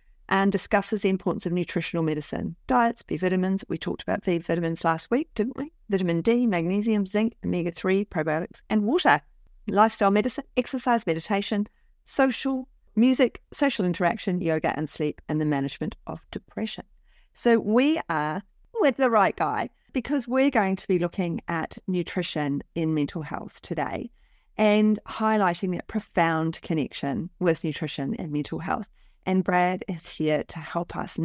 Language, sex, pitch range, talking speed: English, female, 165-215 Hz, 150 wpm